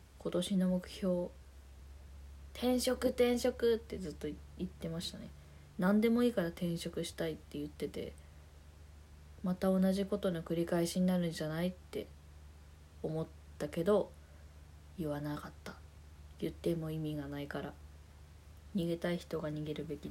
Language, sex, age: Japanese, female, 20-39